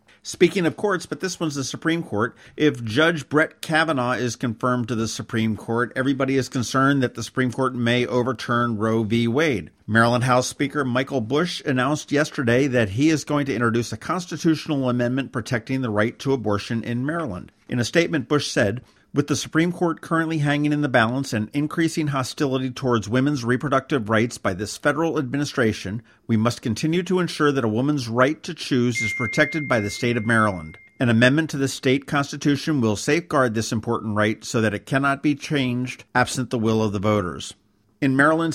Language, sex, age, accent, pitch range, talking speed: English, male, 50-69, American, 115-150 Hz, 190 wpm